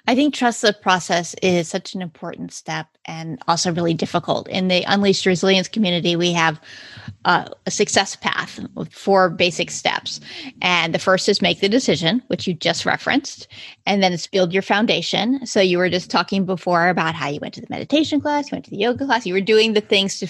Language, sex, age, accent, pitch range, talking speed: English, female, 30-49, American, 175-220 Hz, 215 wpm